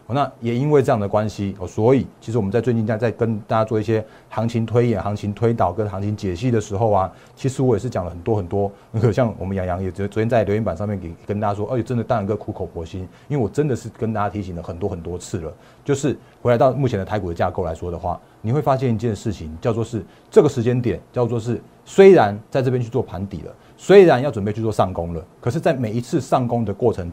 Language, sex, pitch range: Chinese, male, 100-130 Hz